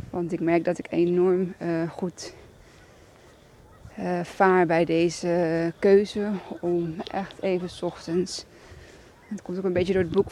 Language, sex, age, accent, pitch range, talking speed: Dutch, female, 20-39, Dutch, 170-195 Hz, 150 wpm